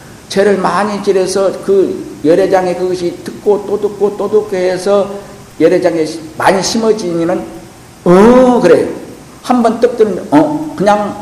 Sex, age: male, 50-69